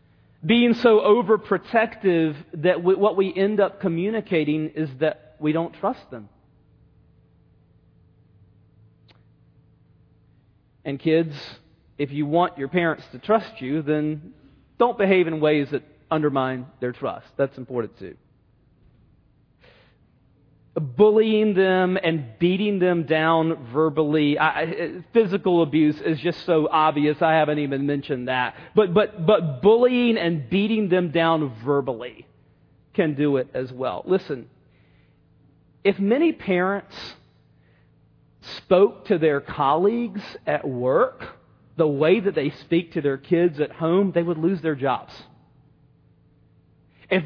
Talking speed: 120 wpm